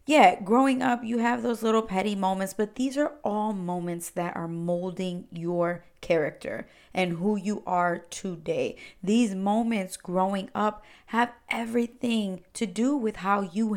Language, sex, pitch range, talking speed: English, female, 165-220 Hz, 155 wpm